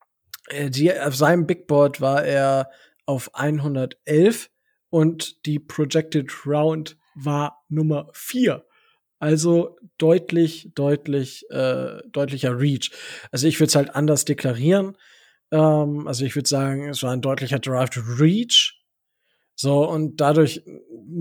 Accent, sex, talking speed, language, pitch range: German, male, 120 wpm, German, 140-160 Hz